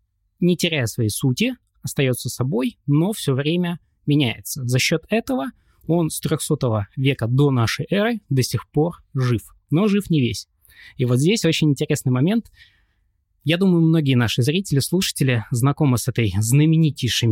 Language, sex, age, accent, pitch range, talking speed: Russian, male, 20-39, native, 115-165 Hz, 155 wpm